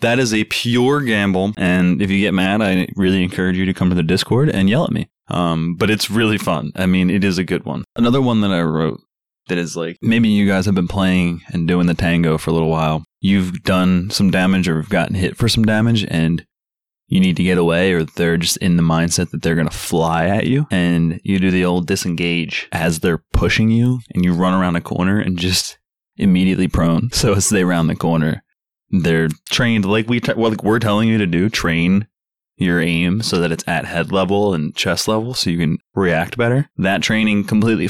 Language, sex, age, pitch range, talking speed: English, male, 20-39, 85-105 Hz, 230 wpm